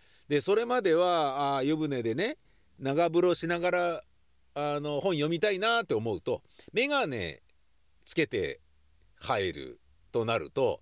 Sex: male